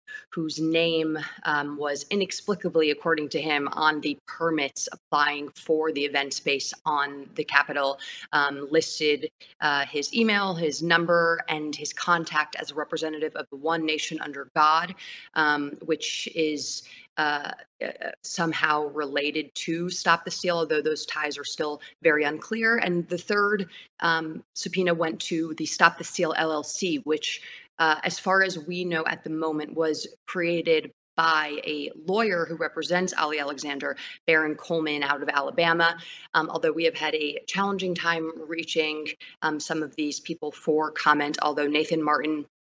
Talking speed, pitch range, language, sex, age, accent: 155 wpm, 150-170 Hz, English, female, 30-49, American